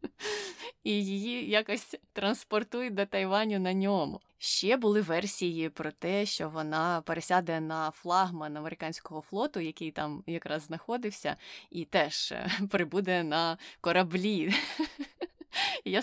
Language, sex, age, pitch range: Ukrainian, female, 20-39, 160-210 Hz